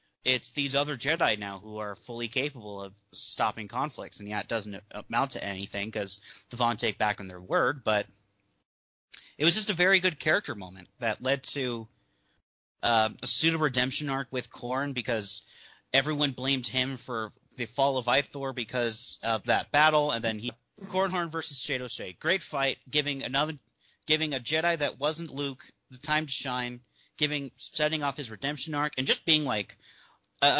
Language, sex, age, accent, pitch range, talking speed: English, male, 30-49, American, 115-150 Hz, 180 wpm